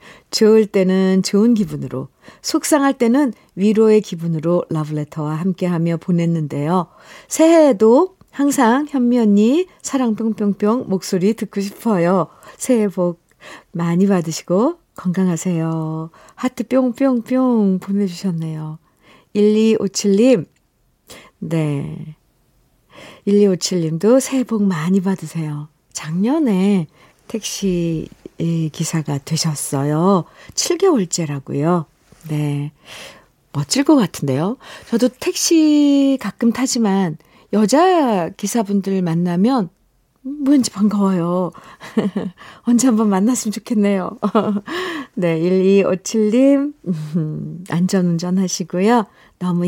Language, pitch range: Korean, 170-235 Hz